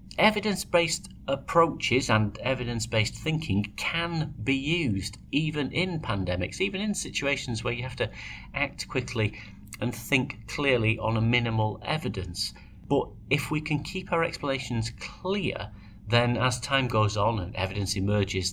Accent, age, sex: British, 40-59, male